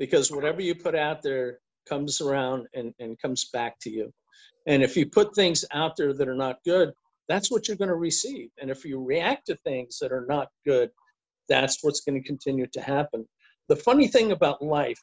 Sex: male